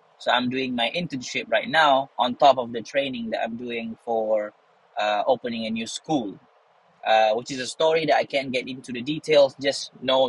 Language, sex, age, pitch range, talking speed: Malay, male, 20-39, 120-170 Hz, 205 wpm